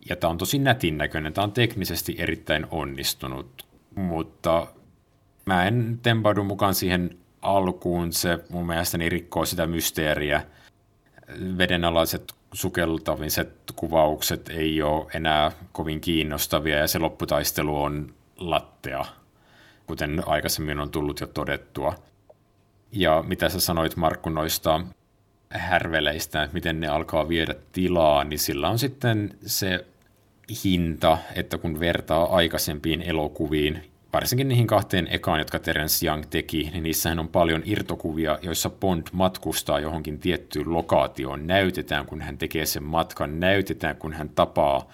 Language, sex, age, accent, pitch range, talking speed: Finnish, male, 50-69, native, 75-90 Hz, 125 wpm